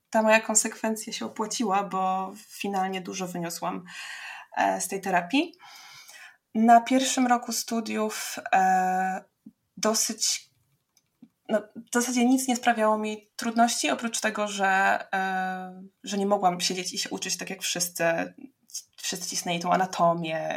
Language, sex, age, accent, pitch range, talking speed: Polish, female, 20-39, native, 185-235 Hz, 130 wpm